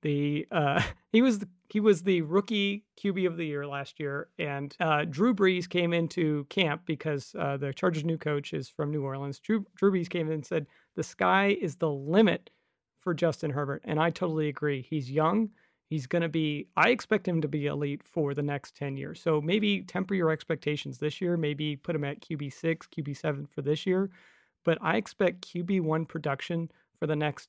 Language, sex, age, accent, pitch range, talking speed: English, male, 40-59, American, 145-175 Hz, 200 wpm